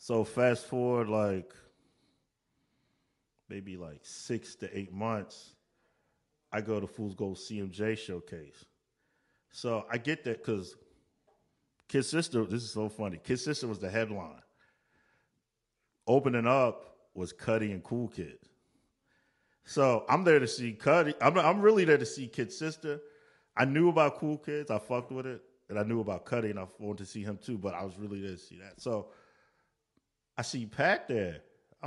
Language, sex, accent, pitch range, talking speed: English, male, American, 105-140 Hz, 170 wpm